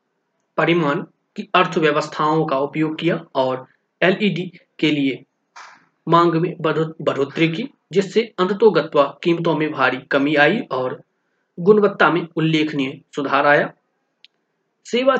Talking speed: 120 wpm